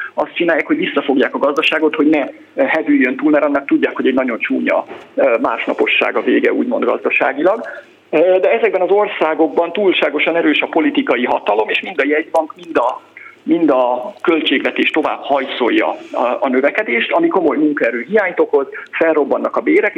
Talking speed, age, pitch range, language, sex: 155 wpm, 50-69, 230-375 Hz, Hungarian, male